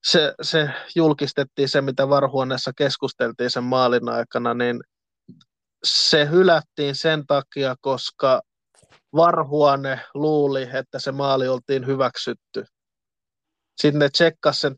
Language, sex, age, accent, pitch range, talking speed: Finnish, male, 20-39, native, 130-150 Hz, 105 wpm